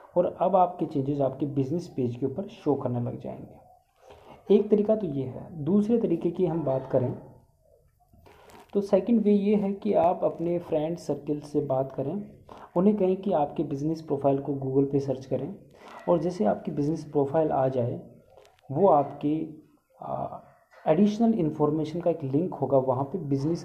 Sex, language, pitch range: male, Hindi, 140-190 Hz